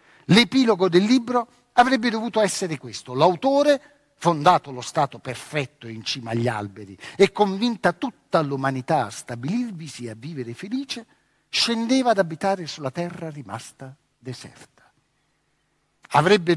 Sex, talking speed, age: male, 125 wpm, 50-69